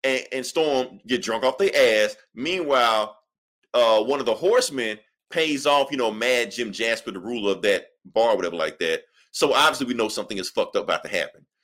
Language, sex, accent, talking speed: English, male, American, 205 wpm